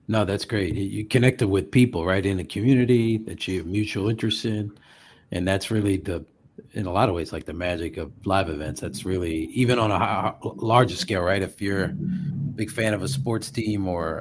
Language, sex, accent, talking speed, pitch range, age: English, male, American, 210 wpm, 95-125 Hz, 50-69